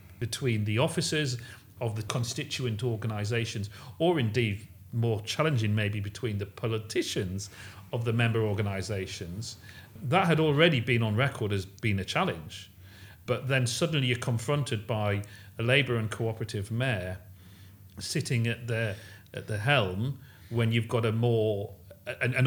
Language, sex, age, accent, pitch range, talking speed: English, male, 40-59, British, 105-130 Hz, 140 wpm